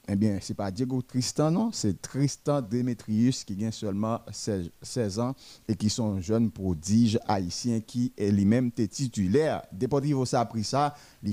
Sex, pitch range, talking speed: male, 110-130 Hz, 150 wpm